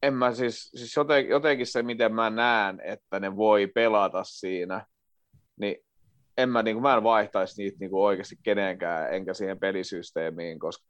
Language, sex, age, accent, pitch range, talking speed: Finnish, male, 30-49, native, 100-115 Hz, 170 wpm